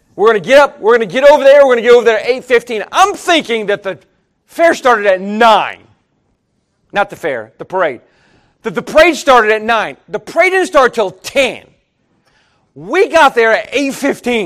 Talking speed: 200 wpm